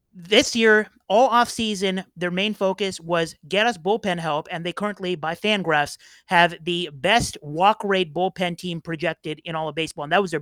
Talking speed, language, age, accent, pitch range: 195 wpm, English, 30-49, American, 170-210 Hz